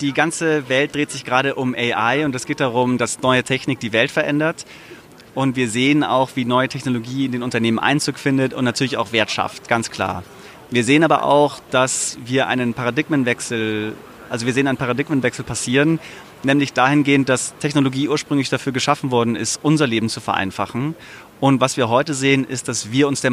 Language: German